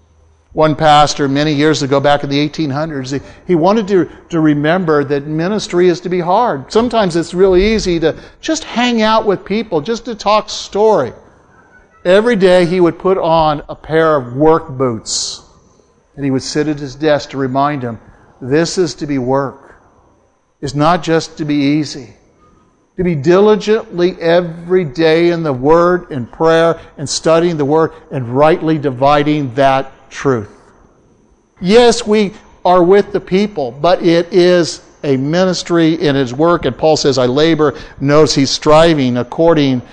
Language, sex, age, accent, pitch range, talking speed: English, male, 60-79, American, 145-190 Hz, 160 wpm